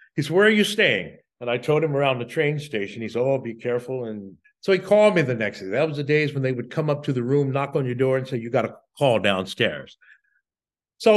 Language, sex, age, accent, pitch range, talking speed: English, male, 50-69, American, 125-185 Hz, 270 wpm